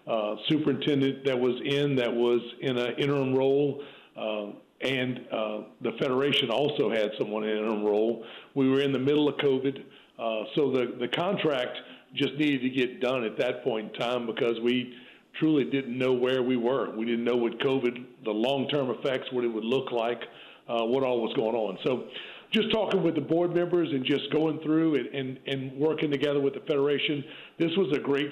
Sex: male